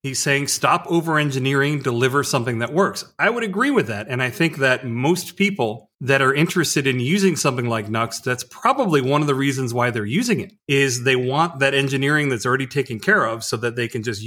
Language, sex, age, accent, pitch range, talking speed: English, male, 40-59, American, 130-165 Hz, 220 wpm